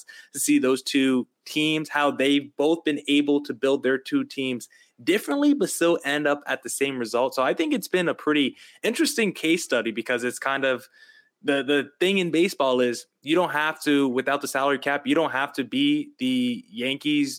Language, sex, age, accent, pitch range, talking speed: English, male, 20-39, American, 135-180 Hz, 205 wpm